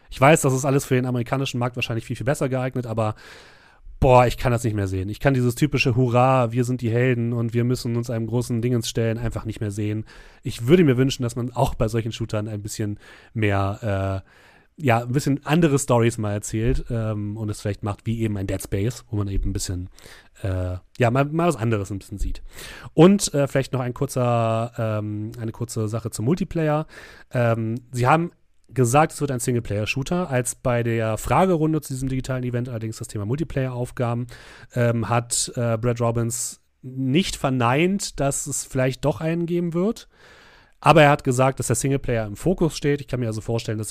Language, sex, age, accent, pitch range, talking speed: German, male, 30-49, German, 110-140 Hz, 205 wpm